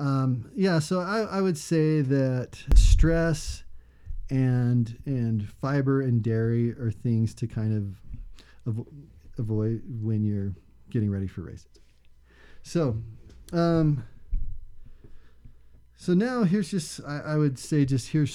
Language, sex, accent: English, male, American